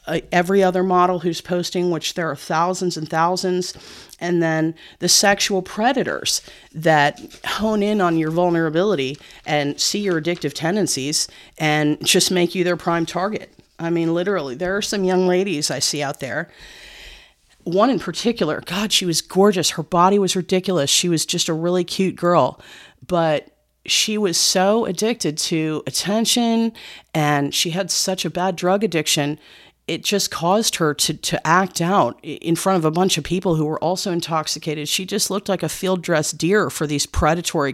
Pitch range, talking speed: 150-185 Hz, 170 wpm